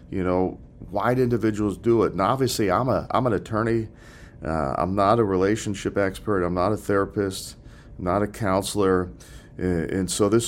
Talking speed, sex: 185 wpm, male